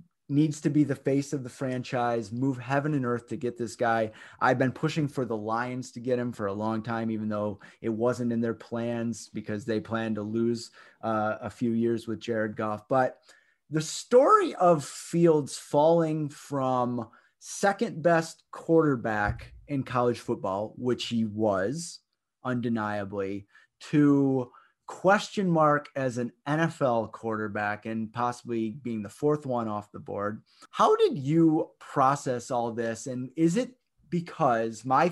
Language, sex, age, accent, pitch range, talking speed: English, male, 30-49, American, 115-150 Hz, 155 wpm